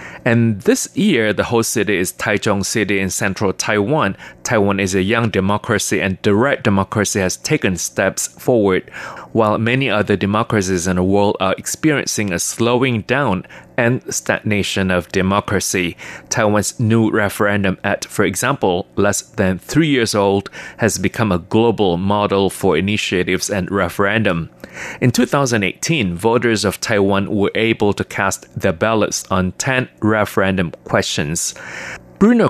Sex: male